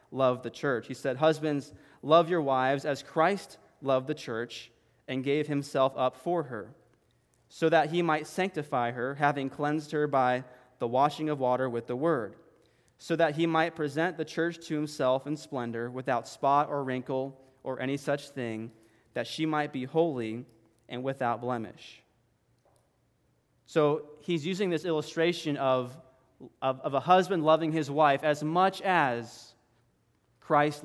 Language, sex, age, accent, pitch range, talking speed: English, male, 20-39, American, 125-160 Hz, 160 wpm